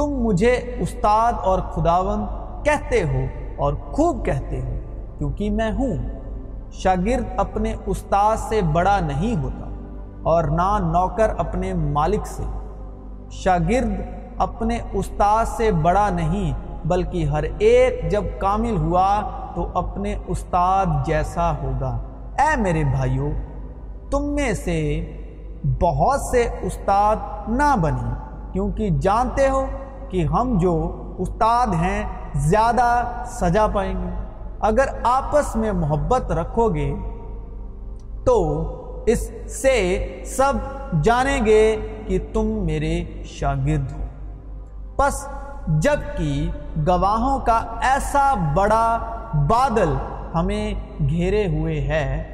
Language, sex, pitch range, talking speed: Urdu, male, 150-225 Hz, 110 wpm